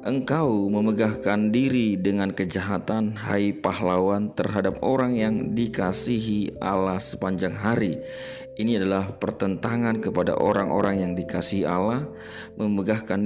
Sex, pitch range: male, 95-115 Hz